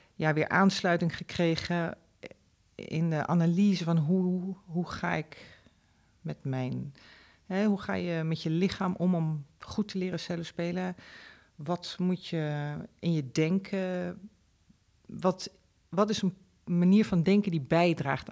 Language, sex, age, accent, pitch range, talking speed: Dutch, female, 40-59, Dutch, 145-180 Hz, 140 wpm